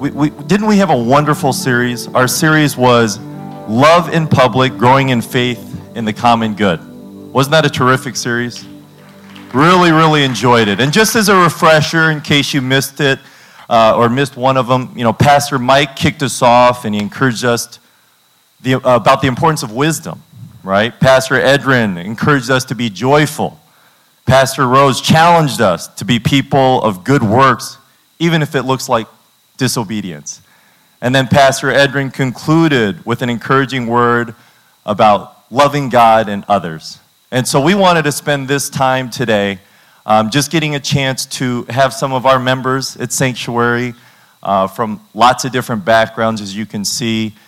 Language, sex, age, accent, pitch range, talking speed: English, male, 40-59, American, 120-145 Hz, 165 wpm